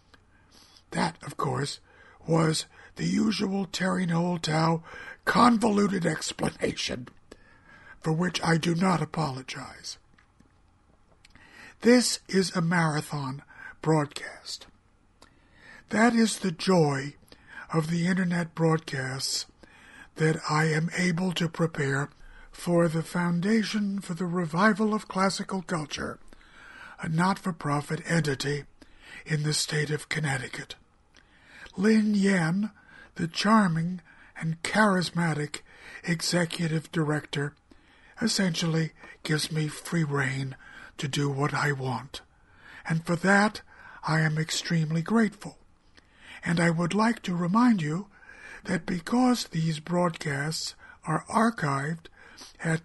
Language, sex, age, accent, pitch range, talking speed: English, male, 60-79, American, 150-190 Hz, 105 wpm